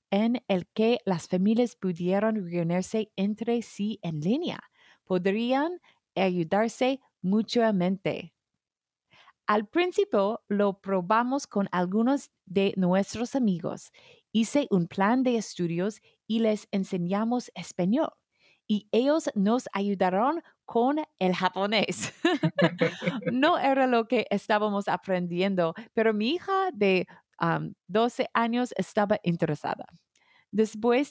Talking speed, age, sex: 105 wpm, 30-49, female